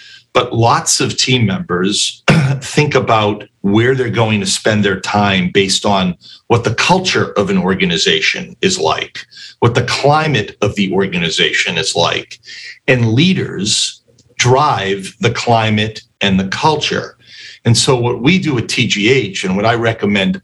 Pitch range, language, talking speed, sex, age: 100-135 Hz, English, 150 wpm, male, 40-59